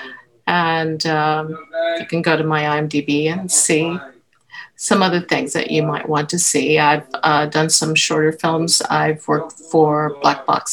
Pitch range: 155-205 Hz